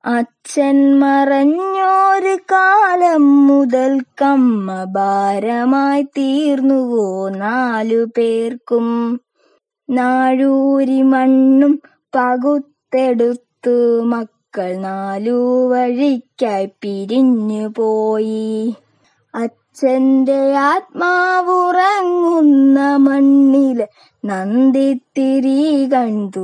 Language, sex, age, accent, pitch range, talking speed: Malayalam, female, 20-39, native, 245-290 Hz, 50 wpm